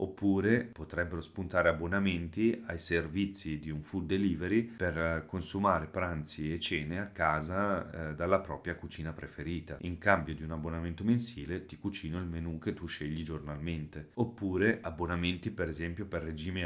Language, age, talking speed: Italian, 40-59, 150 wpm